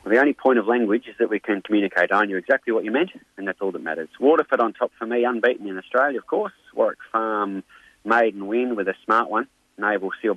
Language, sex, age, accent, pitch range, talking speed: English, male, 30-49, Australian, 100-135 Hz, 245 wpm